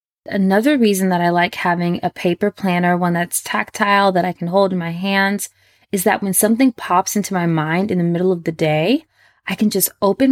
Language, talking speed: English, 215 wpm